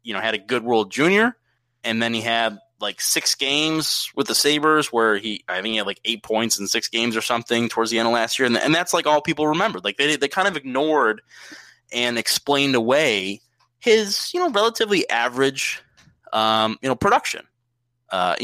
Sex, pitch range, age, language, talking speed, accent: male, 110-130 Hz, 20-39, English, 205 wpm, American